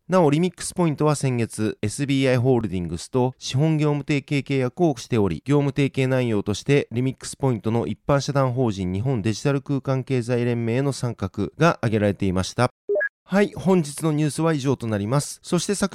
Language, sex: Japanese, male